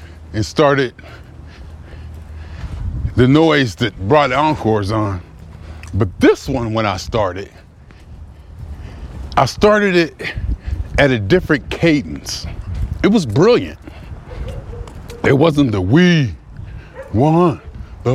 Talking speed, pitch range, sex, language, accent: 100 wpm, 90-150 Hz, male, English, American